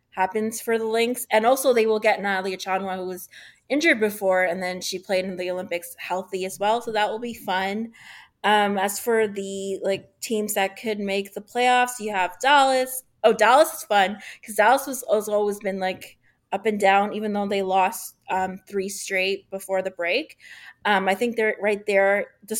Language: English